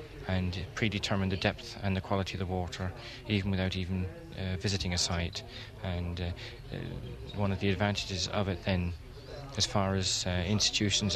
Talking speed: 165 wpm